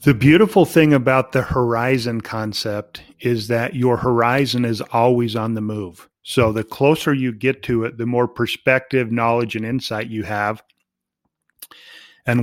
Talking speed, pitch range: 155 wpm, 115-135 Hz